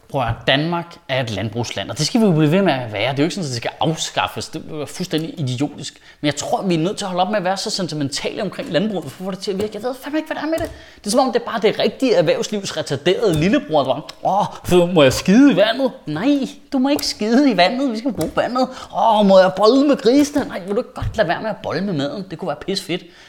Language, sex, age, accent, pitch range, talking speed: Danish, male, 30-49, native, 135-210 Hz, 290 wpm